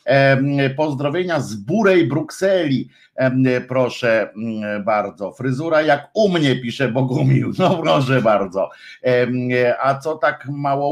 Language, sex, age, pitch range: Polish, male, 50-69, 110-140 Hz